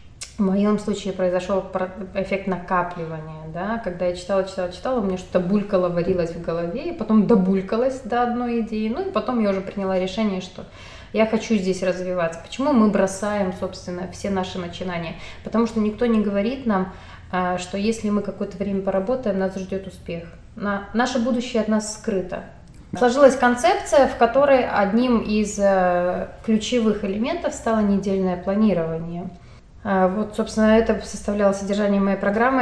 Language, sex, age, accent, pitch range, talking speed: Russian, female, 20-39, native, 185-220 Hz, 150 wpm